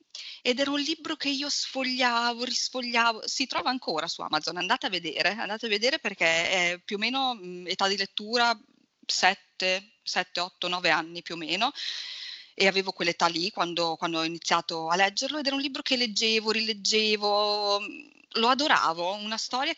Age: 20-39